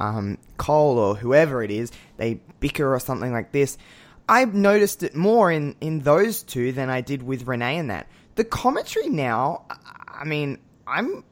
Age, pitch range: 20-39, 115-150 Hz